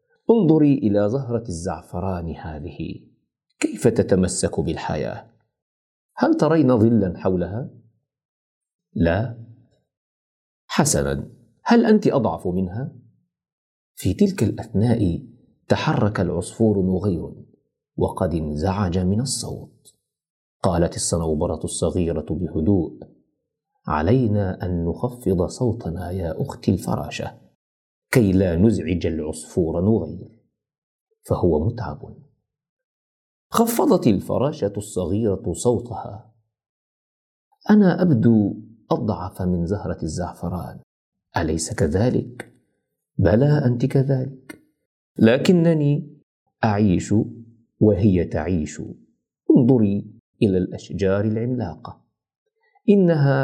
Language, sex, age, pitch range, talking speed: Arabic, male, 40-59, 90-130 Hz, 80 wpm